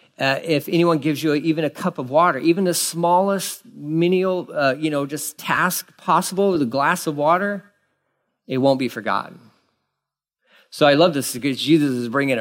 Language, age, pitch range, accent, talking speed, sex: English, 40-59, 125-165 Hz, American, 180 wpm, male